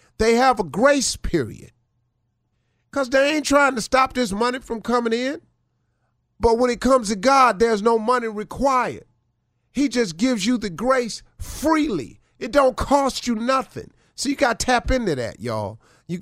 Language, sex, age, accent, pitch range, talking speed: English, male, 50-69, American, 155-250 Hz, 175 wpm